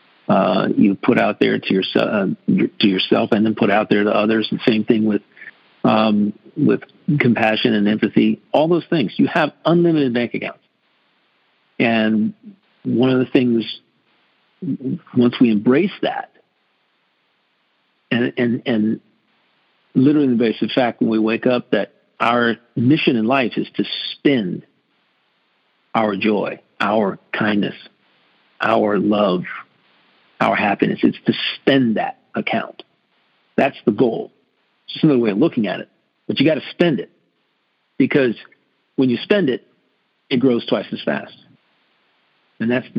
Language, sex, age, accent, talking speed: English, male, 50-69, American, 145 wpm